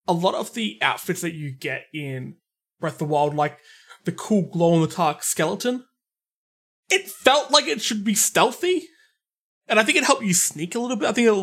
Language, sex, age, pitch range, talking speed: English, male, 20-39, 150-200 Hz, 215 wpm